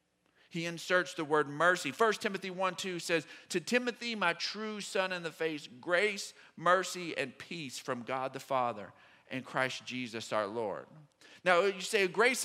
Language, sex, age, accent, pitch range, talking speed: English, male, 40-59, American, 135-180 Hz, 165 wpm